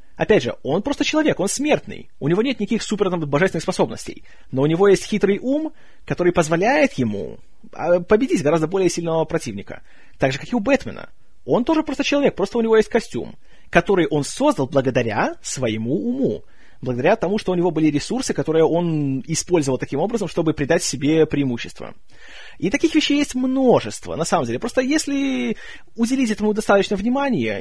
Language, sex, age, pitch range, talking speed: Russian, male, 30-49, 145-215 Hz, 170 wpm